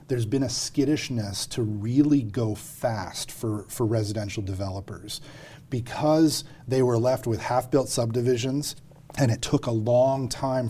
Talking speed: 140 wpm